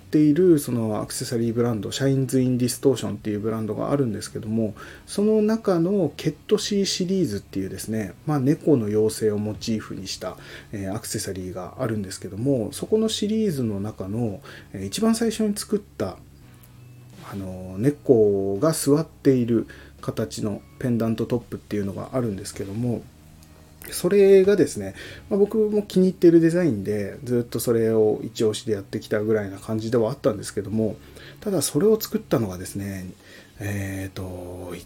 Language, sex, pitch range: Japanese, male, 100-145 Hz